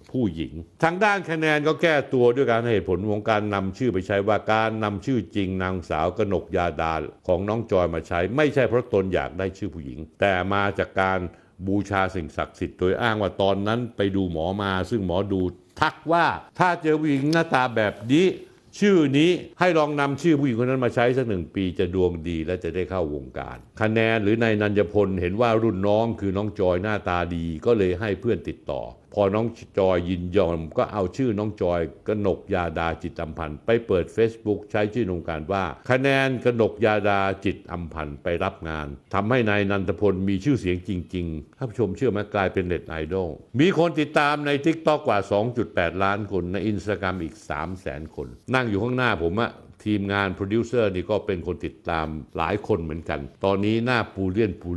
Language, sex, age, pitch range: Thai, male, 60-79, 90-125 Hz